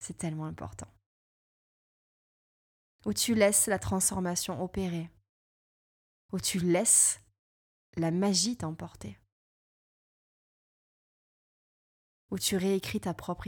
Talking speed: 90 wpm